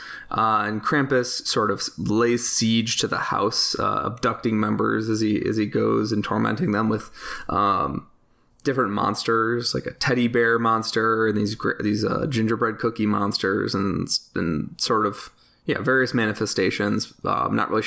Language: English